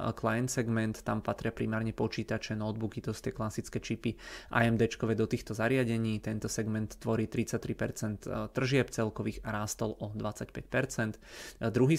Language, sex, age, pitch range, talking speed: Czech, male, 20-39, 110-120 Hz, 130 wpm